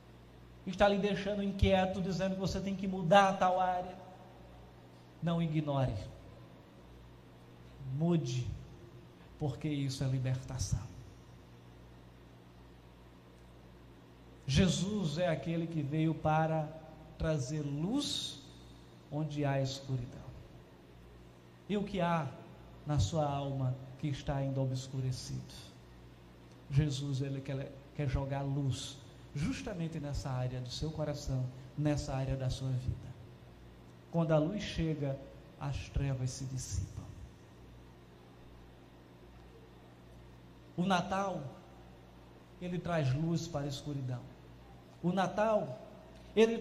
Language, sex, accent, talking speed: Portuguese, male, Brazilian, 100 wpm